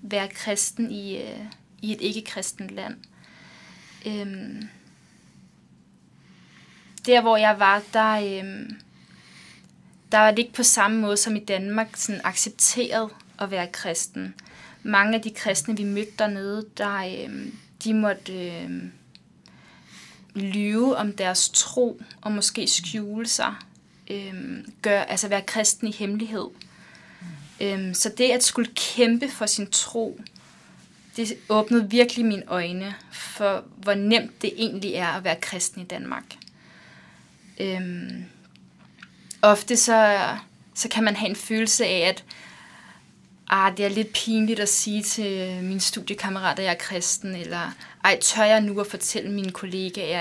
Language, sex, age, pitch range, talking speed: Danish, female, 20-39, 195-220 Hz, 135 wpm